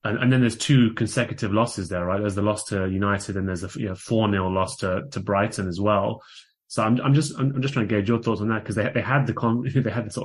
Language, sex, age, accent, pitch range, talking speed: English, male, 20-39, British, 100-115 Hz, 280 wpm